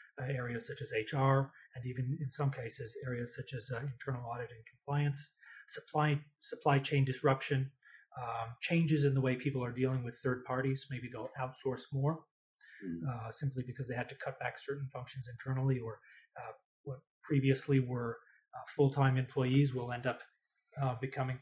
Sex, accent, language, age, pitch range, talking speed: male, Canadian, English, 30-49, 125-145 Hz, 170 wpm